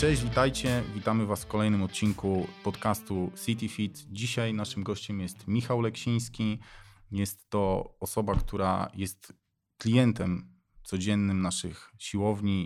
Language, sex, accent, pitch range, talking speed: Polish, male, native, 95-115 Hz, 120 wpm